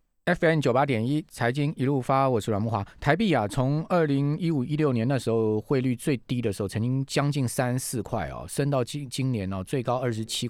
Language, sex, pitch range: Chinese, male, 105-140 Hz